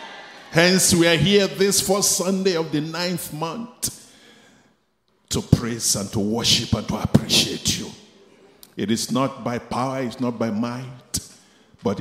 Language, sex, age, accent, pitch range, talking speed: English, male, 50-69, Nigerian, 115-160 Hz, 150 wpm